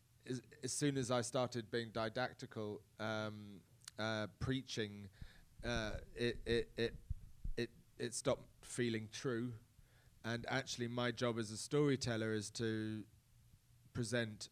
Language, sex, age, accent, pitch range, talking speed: English, male, 30-49, British, 110-125 Hz, 120 wpm